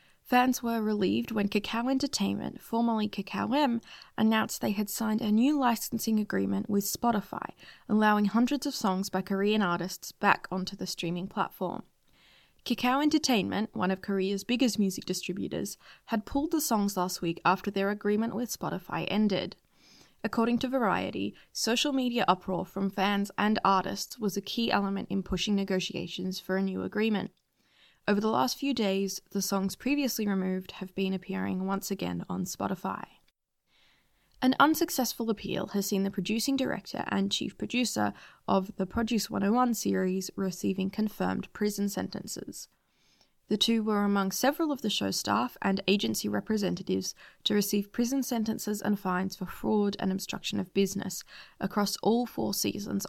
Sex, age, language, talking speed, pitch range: female, 20-39, English, 155 wpm, 190-230 Hz